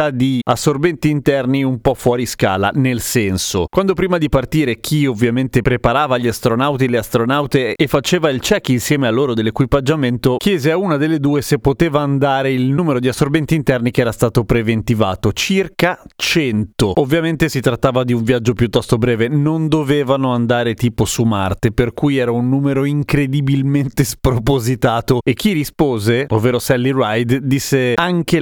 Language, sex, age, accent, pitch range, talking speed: Italian, male, 30-49, native, 120-150 Hz, 160 wpm